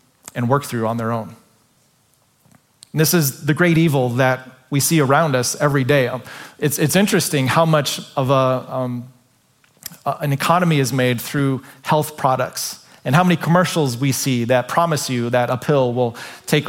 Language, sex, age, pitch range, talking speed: English, male, 30-49, 125-165 Hz, 175 wpm